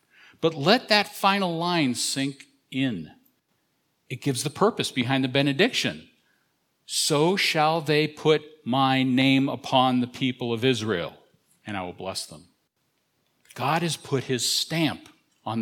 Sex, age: male, 50-69